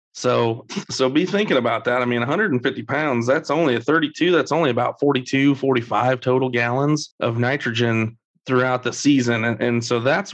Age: 30-49